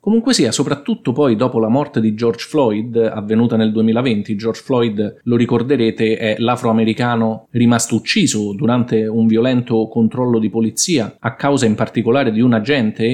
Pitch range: 110-135 Hz